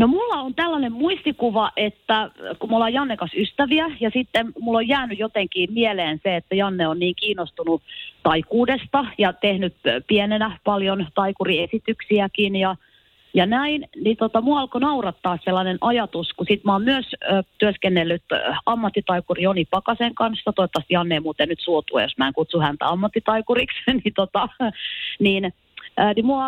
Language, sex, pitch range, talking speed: Finnish, female, 165-225 Hz, 155 wpm